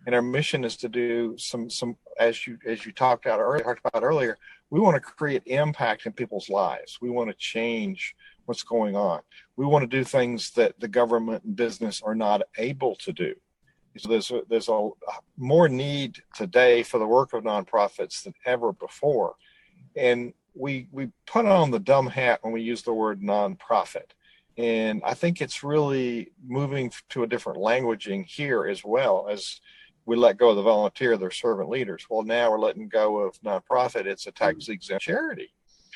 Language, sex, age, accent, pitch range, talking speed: English, male, 50-69, American, 115-140 Hz, 185 wpm